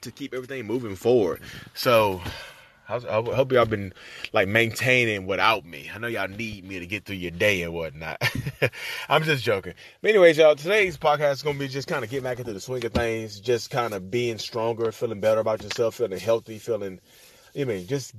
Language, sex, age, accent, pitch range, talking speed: English, male, 30-49, American, 95-120 Hz, 205 wpm